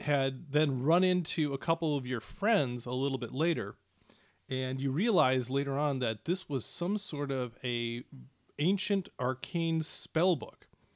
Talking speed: 160 wpm